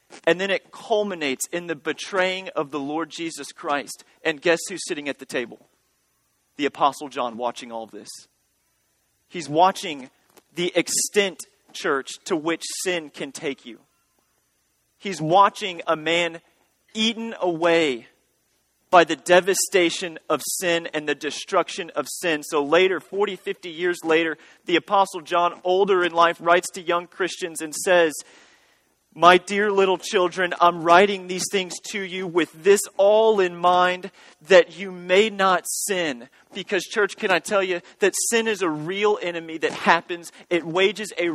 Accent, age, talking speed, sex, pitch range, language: American, 30-49, 155 wpm, male, 165-200 Hz, English